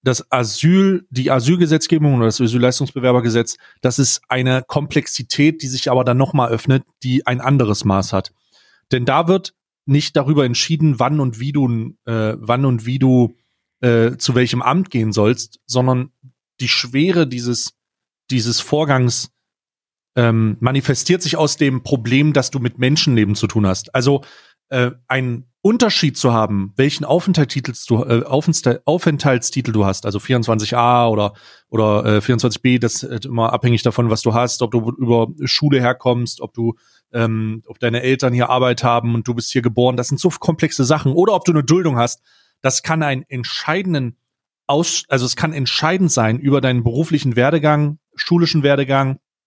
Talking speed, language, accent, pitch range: 165 wpm, German, German, 120-145 Hz